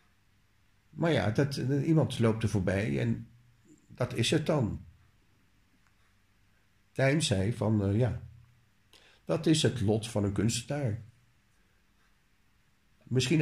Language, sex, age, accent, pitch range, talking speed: Dutch, male, 50-69, Dutch, 100-125 Hz, 110 wpm